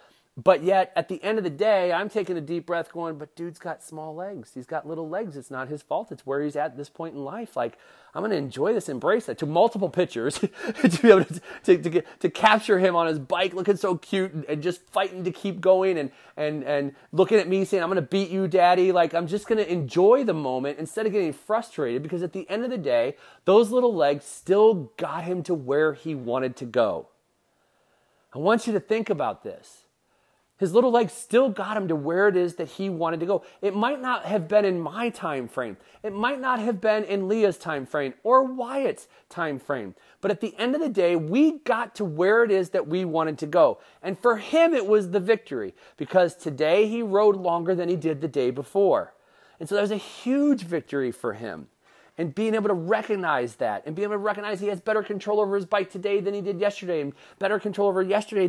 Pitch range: 165-210 Hz